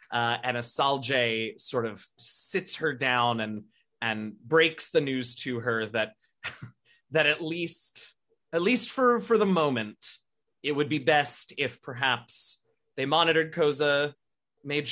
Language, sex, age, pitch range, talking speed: English, male, 20-39, 115-160 Hz, 140 wpm